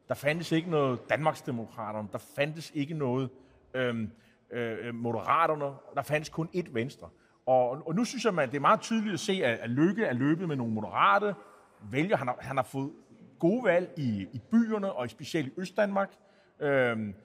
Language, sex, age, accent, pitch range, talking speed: Danish, male, 30-49, native, 130-175 Hz, 175 wpm